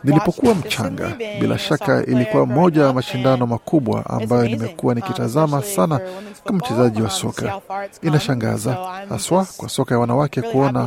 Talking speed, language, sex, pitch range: 140 wpm, Swahili, male, 120-155 Hz